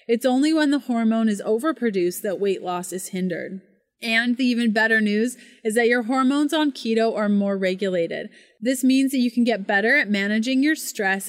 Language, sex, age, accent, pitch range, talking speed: English, female, 30-49, American, 205-255 Hz, 195 wpm